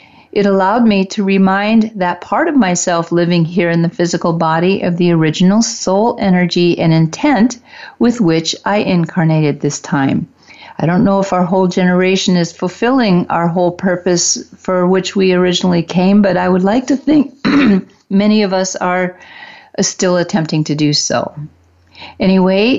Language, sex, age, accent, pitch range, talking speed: English, female, 50-69, American, 175-225 Hz, 165 wpm